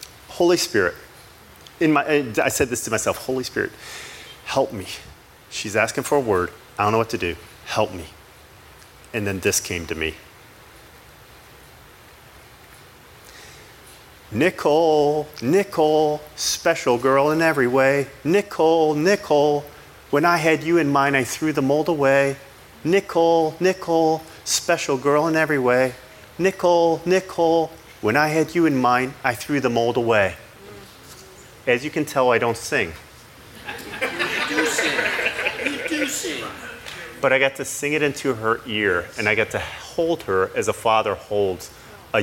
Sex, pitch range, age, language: male, 110-160 Hz, 40-59, English